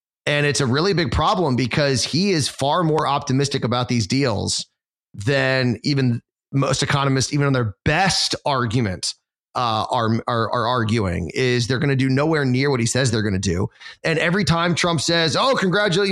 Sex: male